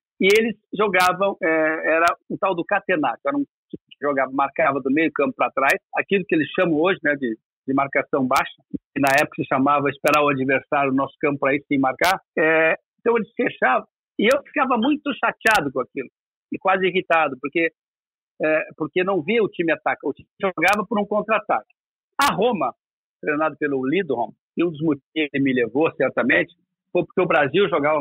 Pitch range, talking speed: 150-210 Hz, 180 wpm